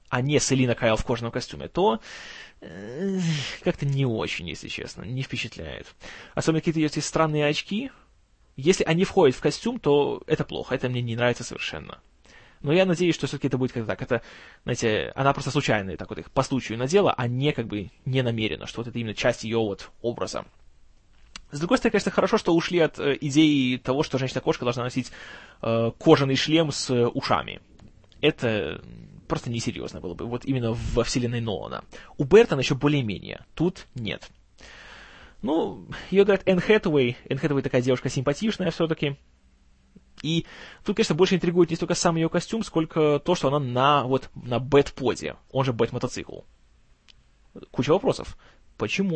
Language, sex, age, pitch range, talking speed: Russian, male, 20-39, 120-160 Hz, 170 wpm